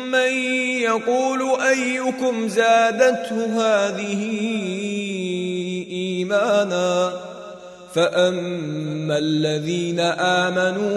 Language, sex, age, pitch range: Arabic, male, 30-49, 190-230 Hz